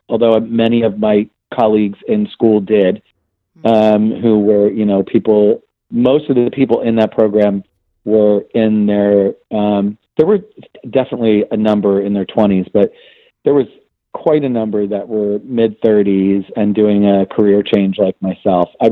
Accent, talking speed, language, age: American, 160 wpm, English, 40-59